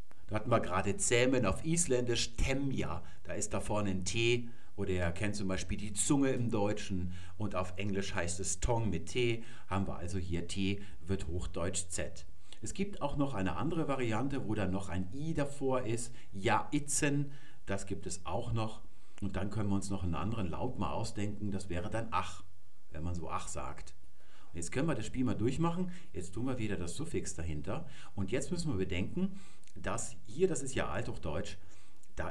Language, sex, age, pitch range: German, male, 50-69, 90-120 Hz